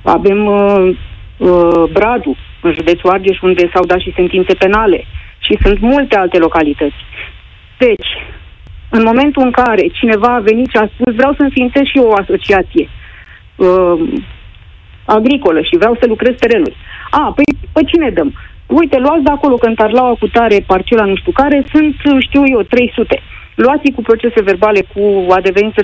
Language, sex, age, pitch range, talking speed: Romanian, female, 30-49, 185-265 Hz, 165 wpm